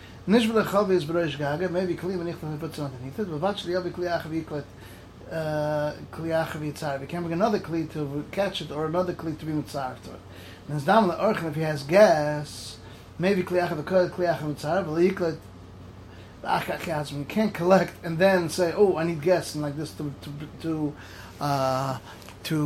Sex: male